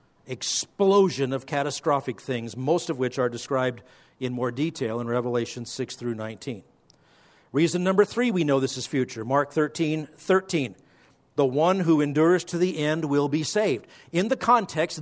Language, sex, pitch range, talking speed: English, male, 125-165 Hz, 165 wpm